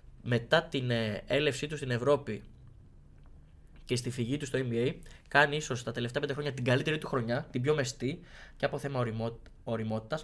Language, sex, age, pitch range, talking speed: Greek, male, 20-39, 115-150 Hz, 175 wpm